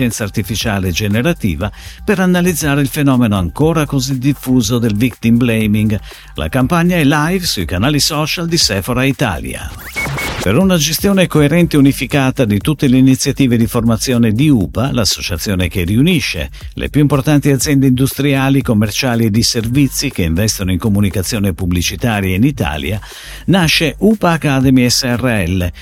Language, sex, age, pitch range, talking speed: Italian, male, 50-69, 110-150 Hz, 135 wpm